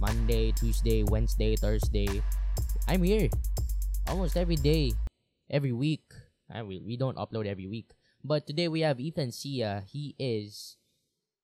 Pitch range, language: 105-145 Hz, English